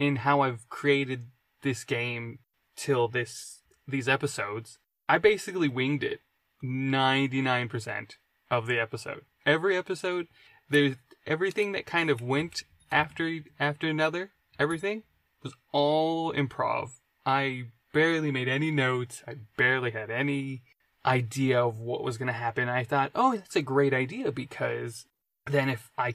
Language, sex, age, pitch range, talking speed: English, male, 20-39, 125-150 Hz, 140 wpm